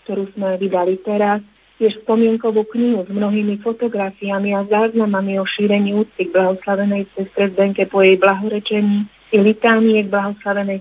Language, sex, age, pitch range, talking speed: Slovak, female, 30-49, 195-220 Hz, 145 wpm